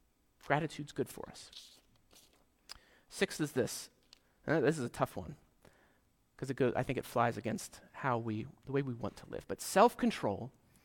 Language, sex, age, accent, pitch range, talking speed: English, male, 30-49, American, 125-170 Hz, 155 wpm